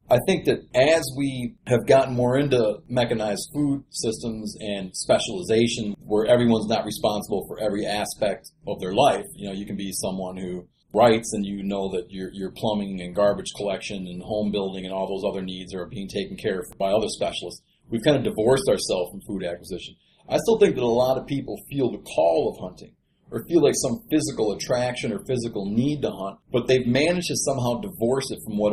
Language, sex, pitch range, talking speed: English, male, 100-135 Hz, 205 wpm